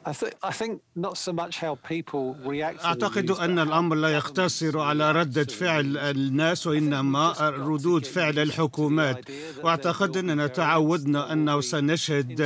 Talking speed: 85 wpm